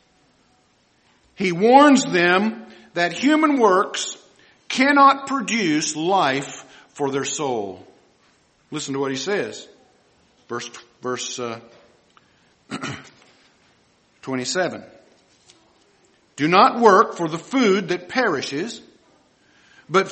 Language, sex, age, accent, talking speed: English, male, 50-69, American, 90 wpm